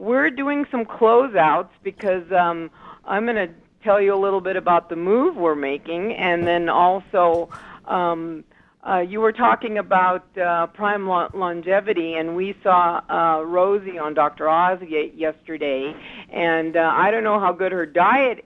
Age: 50-69